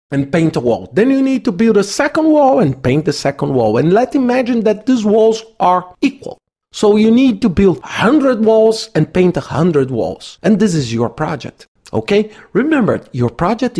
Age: 50-69